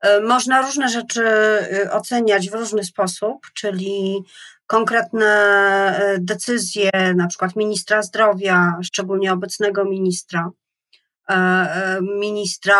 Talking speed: 85 wpm